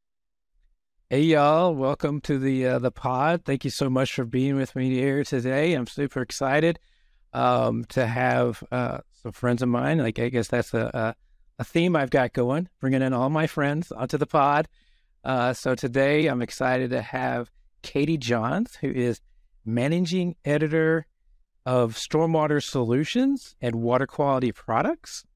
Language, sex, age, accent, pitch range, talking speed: English, male, 50-69, American, 125-160 Hz, 160 wpm